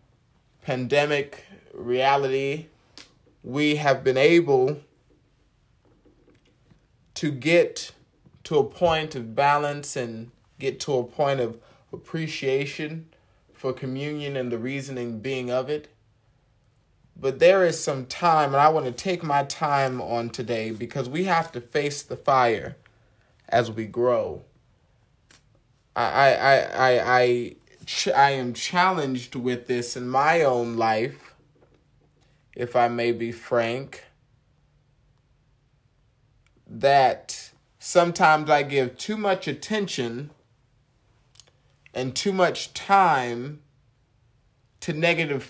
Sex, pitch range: male, 120-155 Hz